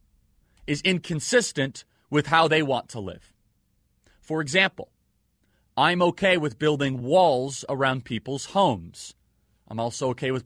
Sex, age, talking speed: male, 30-49, 125 wpm